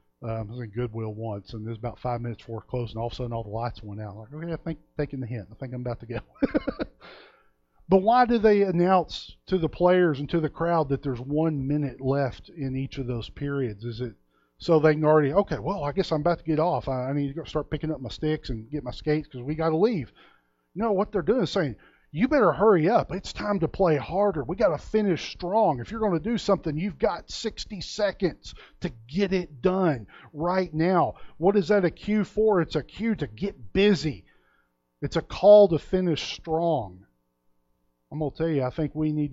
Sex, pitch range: male, 120-175 Hz